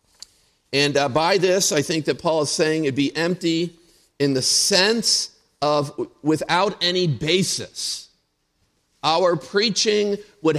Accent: American